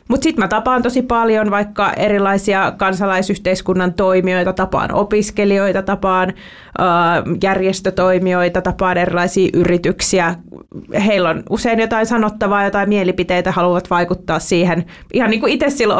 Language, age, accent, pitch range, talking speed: Finnish, 30-49, native, 170-200 Hz, 120 wpm